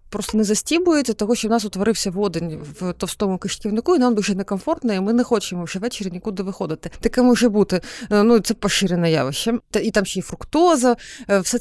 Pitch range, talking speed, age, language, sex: 195-245 Hz, 190 wpm, 30-49, Ukrainian, female